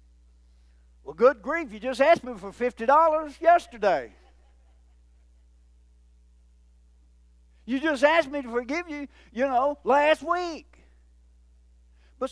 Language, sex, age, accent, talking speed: English, male, 60-79, American, 105 wpm